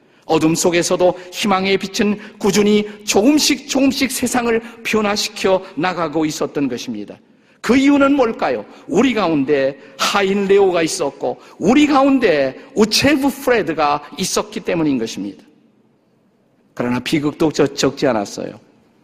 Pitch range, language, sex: 145-210 Hz, Korean, male